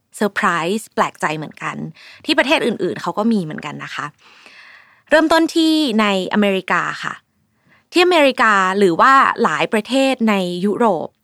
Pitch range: 185-260 Hz